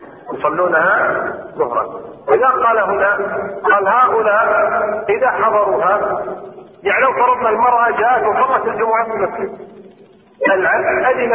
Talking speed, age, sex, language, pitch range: 100 wpm, 50-69, male, Arabic, 200-230 Hz